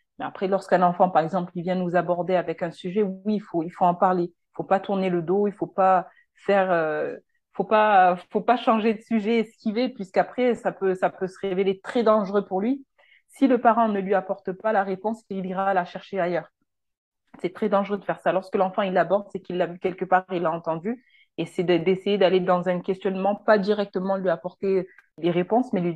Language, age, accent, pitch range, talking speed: French, 30-49, French, 180-210 Hz, 225 wpm